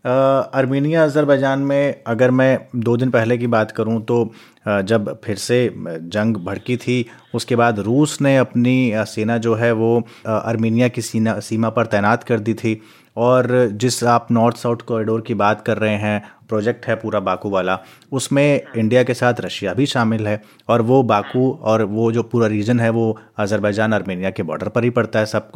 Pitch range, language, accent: 110-140 Hz, Hindi, native